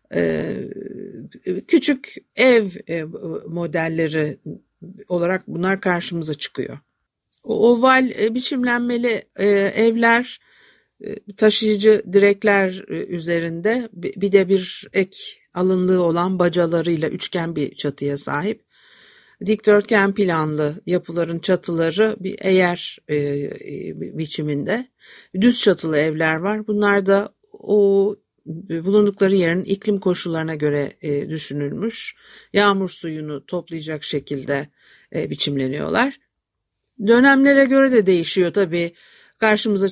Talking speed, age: 85 wpm, 60-79